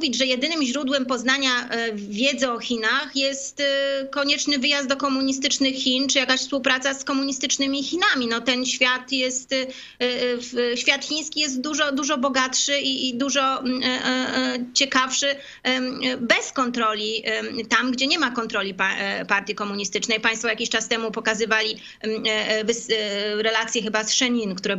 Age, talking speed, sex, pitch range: 30-49, 125 wpm, female, 220-275 Hz